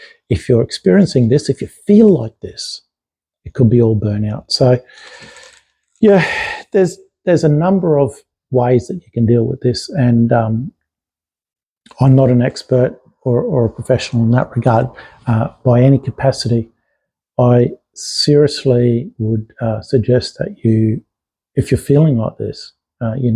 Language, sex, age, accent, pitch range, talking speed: English, male, 50-69, Australian, 115-135 Hz, 150 wpm